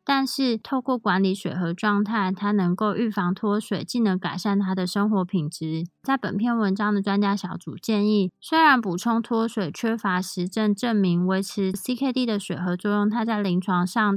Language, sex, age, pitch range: Chinese, female, 20-39, 185-225 Hz